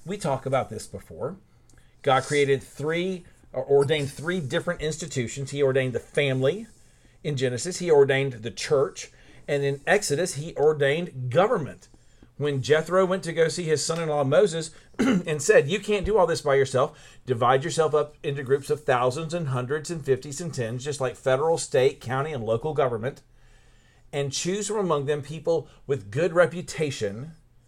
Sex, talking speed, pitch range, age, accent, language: male, 165 wpm, 135-175 Hz, 40-59, American, English